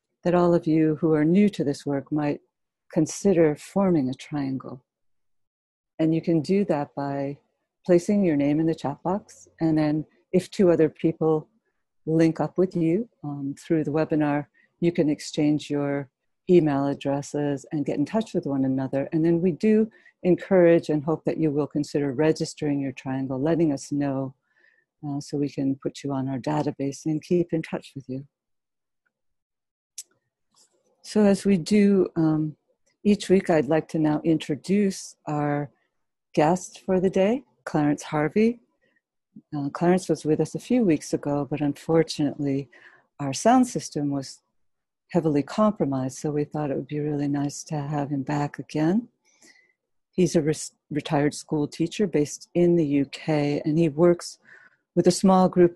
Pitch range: 145-175 Hz